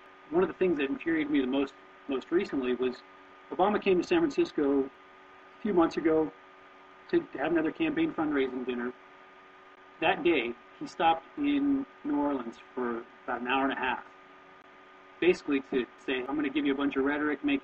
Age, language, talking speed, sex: 40-59, English, 185 wpm, male